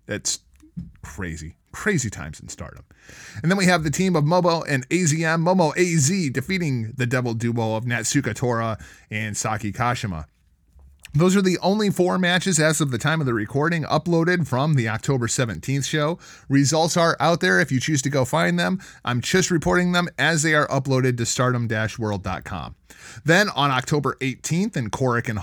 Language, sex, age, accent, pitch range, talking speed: English, male, 30-49, American, 115-160 Hz, 175 wpm